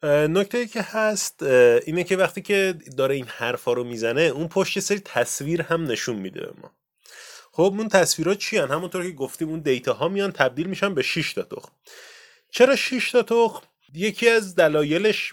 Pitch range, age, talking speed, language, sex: 135-200 Hz, 30-49, 170 wpm, Persian, male